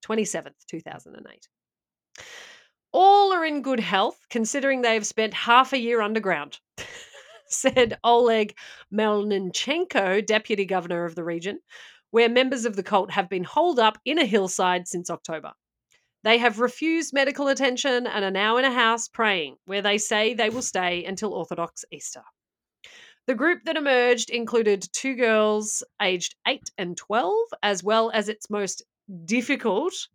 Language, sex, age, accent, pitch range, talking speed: English, female, 40-59, Australian, 195-255 Hz, 150 wpm